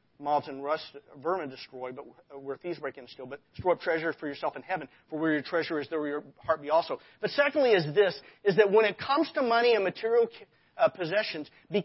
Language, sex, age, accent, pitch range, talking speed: English, male, 40-59, American, 175-245 Hz, 235 wpm